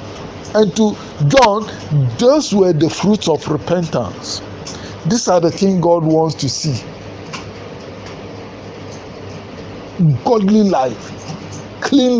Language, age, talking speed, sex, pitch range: English, 60-79, 100 wpm, male, 125-175 Hz